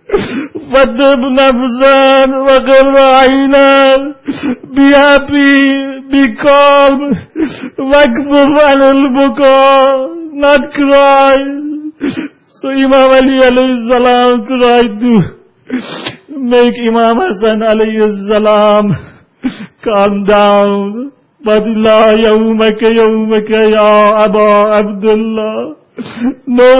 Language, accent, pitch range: English, Indian, 215-265 Hz